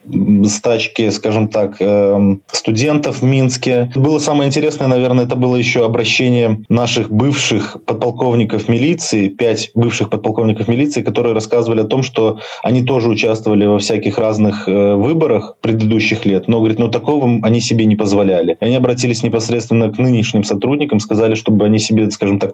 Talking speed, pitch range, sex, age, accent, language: 150 wpm, 110-135 Hz, male, 20-39, native, Russian